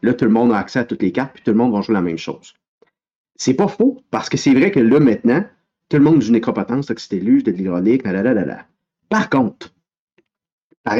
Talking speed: 235 wpm